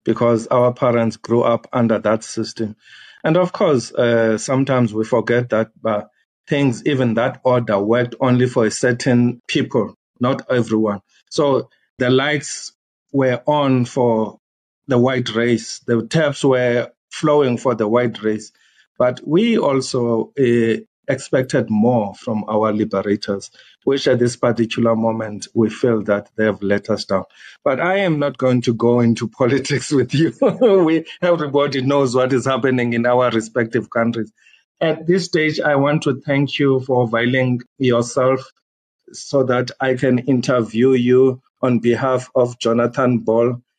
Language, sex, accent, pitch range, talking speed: English, male, South African, 115-135 Hz, 150 wpm